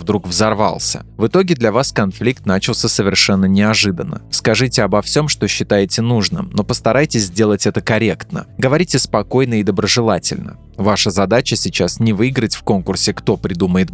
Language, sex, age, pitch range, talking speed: Russian, male, 20-39, 100-120 Hz, 145 wpm